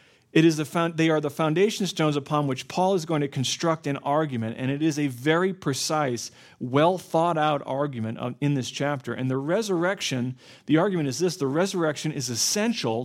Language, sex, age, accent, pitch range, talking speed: English, male, 40-59, American, 130-160 Hz, 190 wpm